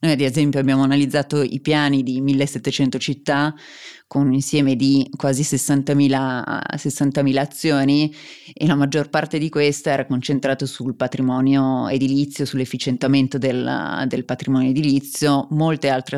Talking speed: 130 wpm